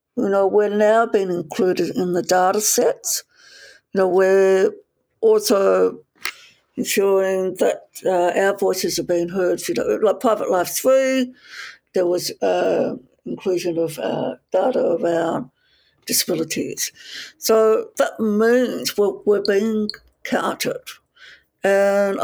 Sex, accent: female, British